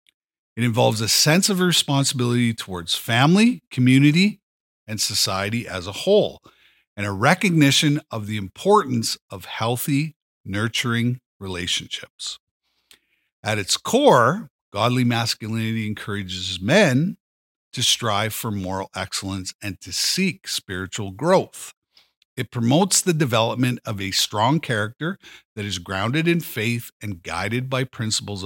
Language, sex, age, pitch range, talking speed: English, male, 50-69, 105-145 Hz, 120 wpm